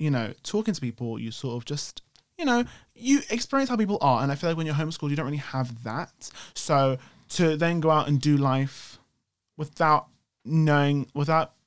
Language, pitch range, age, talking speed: English, 125-165 Hz, 20-39, 200 wpm